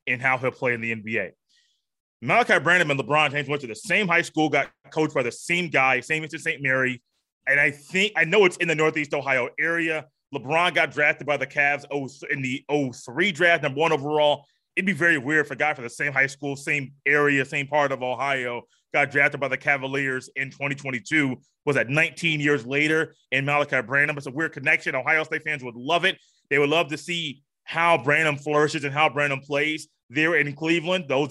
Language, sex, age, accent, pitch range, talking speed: English, male, 20-39, American, 140-165 Hz, 215 wpm